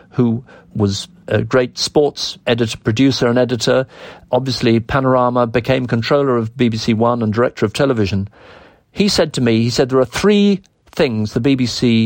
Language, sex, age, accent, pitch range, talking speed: English, male, 50-69, British, 115-170 Hz, 160 wpm